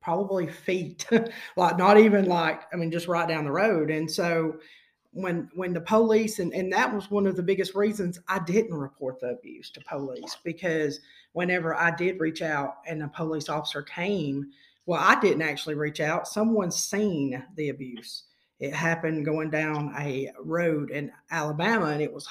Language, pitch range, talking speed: English, 155-195 Hz, 180 wpm